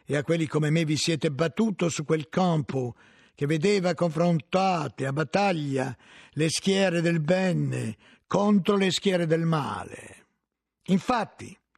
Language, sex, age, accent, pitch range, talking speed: Italian, male, 50-69, native, 125-175 Hz, 130 wpm